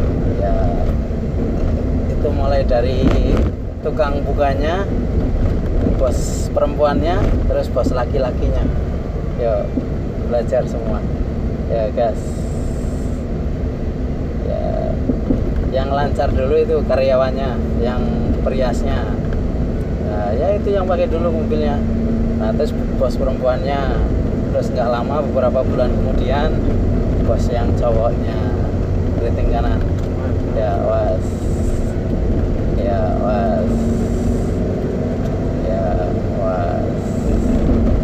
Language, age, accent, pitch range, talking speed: Indonesian, 20-39, native, 80-110 Hz, 80 wpm